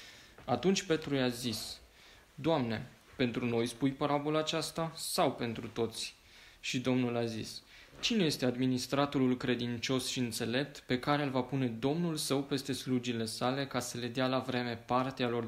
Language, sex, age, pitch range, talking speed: Romanian, male, 20-39, 120-140 Hz, 160 wpm